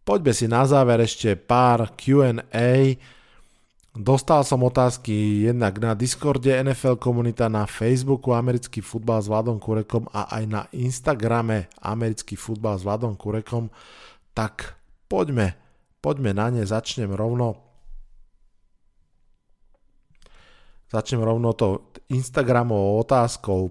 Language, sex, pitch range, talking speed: Slovak, male, 105-130 Hz, 110 wpm